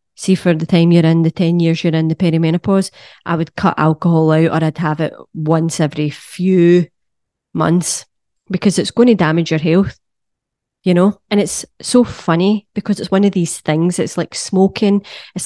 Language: English